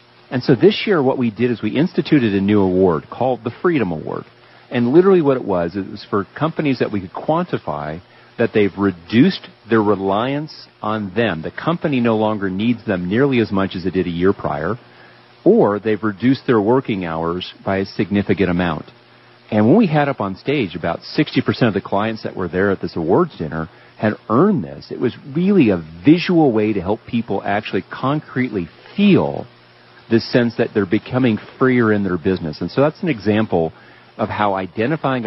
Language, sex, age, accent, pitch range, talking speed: English, male, 40-59, American, 95-125 Hz, 190 wpm